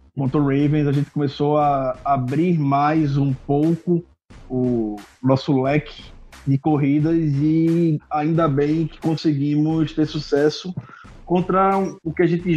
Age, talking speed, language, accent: 20-39, 130 wpm, Portuguese, Brazilian